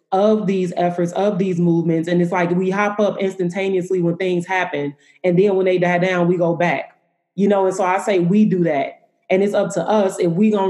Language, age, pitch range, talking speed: English, 30-49, 170-195 Hz, 235 wpm